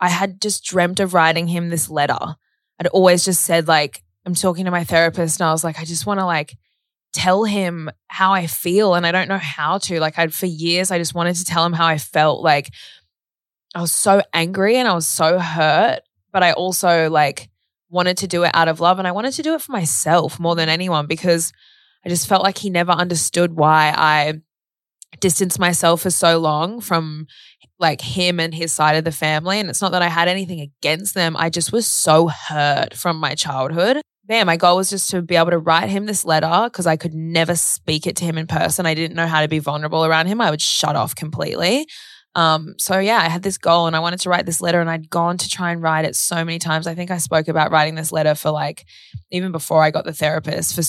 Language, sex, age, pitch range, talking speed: English, female, 20-39, 155-180 Hz, 240 wpm